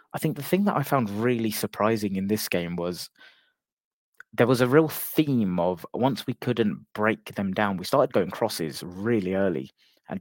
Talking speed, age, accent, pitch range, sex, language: 190 wpm, 20-39, British, 100-135 Hz, male, English